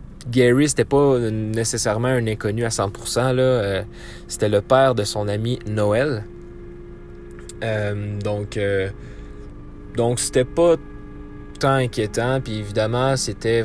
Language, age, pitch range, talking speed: French, 20-39, 105-130 Hz, 125 wpm